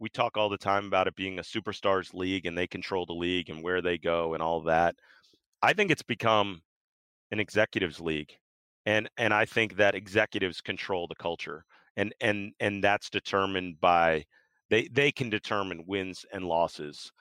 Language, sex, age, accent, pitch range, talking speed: English, male, 40-59, American, 90-115 Hz, 185 wpm